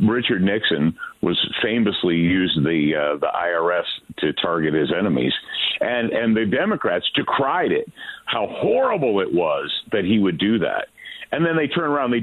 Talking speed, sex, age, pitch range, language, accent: 170 wpm, male, 50-69, 90-145 Hz, English, American